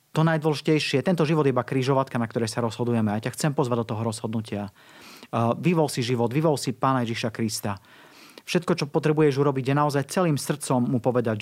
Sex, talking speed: male, 195 wpm